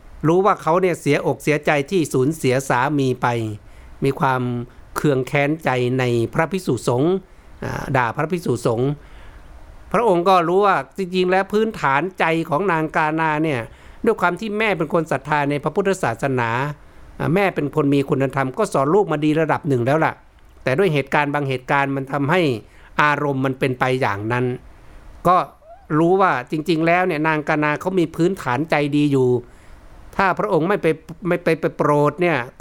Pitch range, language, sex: 130-170 Hz, Thai, male